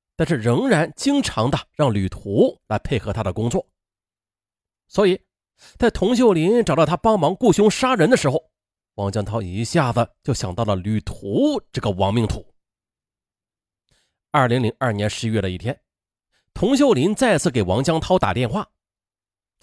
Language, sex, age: Chinese, male, 30-49